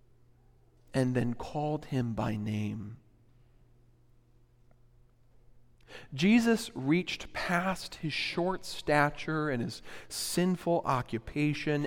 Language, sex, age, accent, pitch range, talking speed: English, male, 40-59, American, 120-150 Hz, 80 wpm